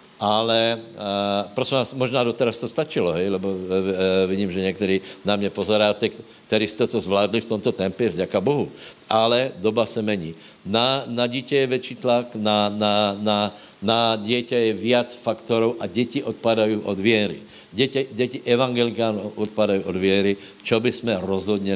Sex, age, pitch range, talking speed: male, 70-89, 100-115 Hz, 155 wpm